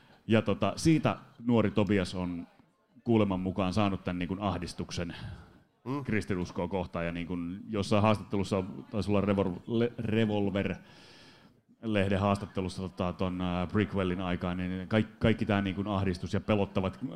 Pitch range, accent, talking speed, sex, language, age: 95-120 Hz, native, 125 wpm, male, Finnish, 30-49